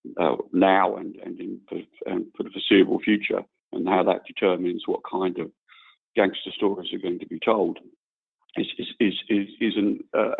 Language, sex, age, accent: English, male, 50-69, British